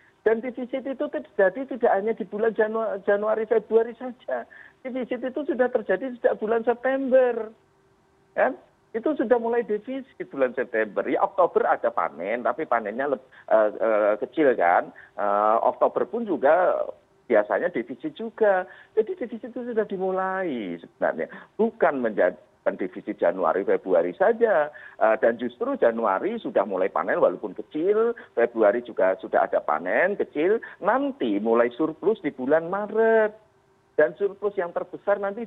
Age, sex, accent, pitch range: 50-69, male, native, 185-250 Hz